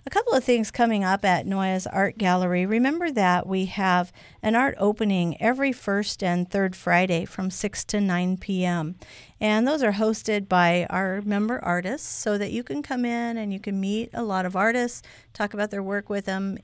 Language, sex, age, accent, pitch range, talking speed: English, female, 50-69, American, 180-220 Hz, 200 wpm